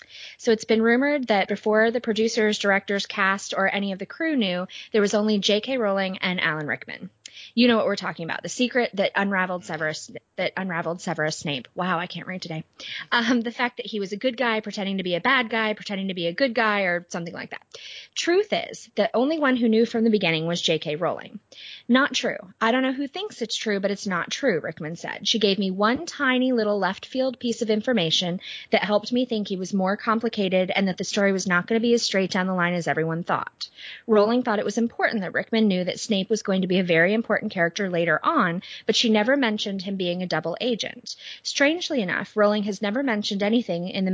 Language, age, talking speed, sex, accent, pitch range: English, 20-39, 235 wpm, female, American, 180-230 Hz